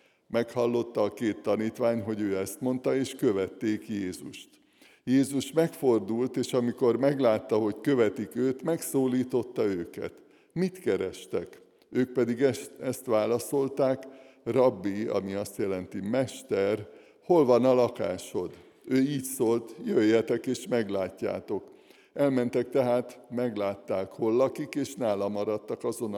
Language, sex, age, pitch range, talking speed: Hungarian, male, 60-79, 110-130 Hz, 120 wpm